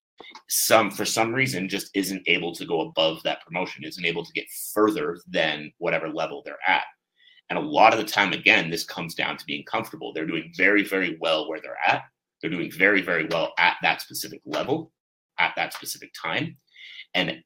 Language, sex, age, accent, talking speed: English, male, 30-49, American, 195 wpm